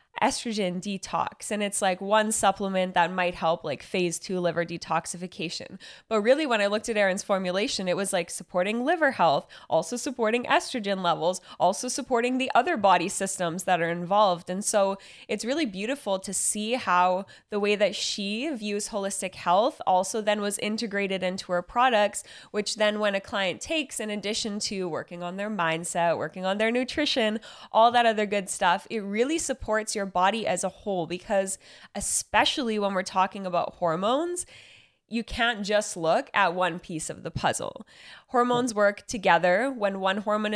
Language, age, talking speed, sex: English, 10-29, 175 wpm, female